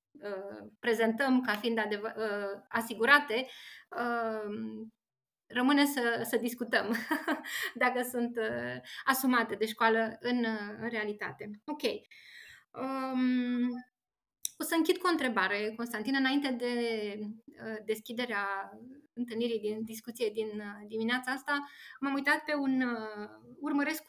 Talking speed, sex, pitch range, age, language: 100 wpm, female, 225-290 Hz, 20-39, Romanian